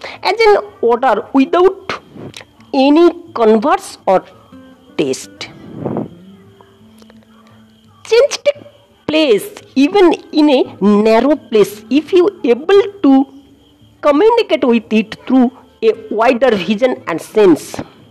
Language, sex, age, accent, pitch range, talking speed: English, female, 50-69, Indian, 220-360 Hz, 100 wpm